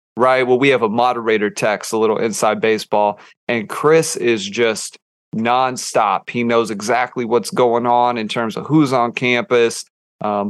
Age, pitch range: 30-49, 115-135 Hz